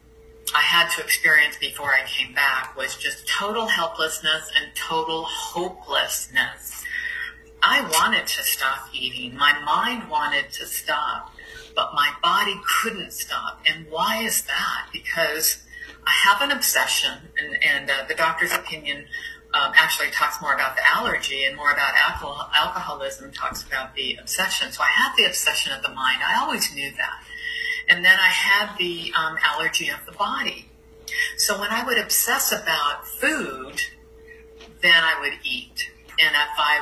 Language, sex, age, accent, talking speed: English, female, 50-69, American, 155 wpm